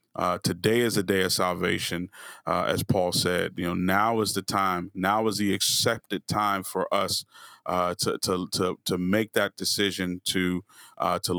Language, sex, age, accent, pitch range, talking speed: English, male, 30-49, American, 90-100 Hz, 185 wpm